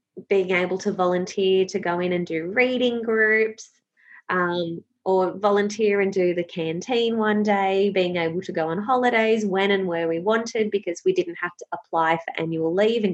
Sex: female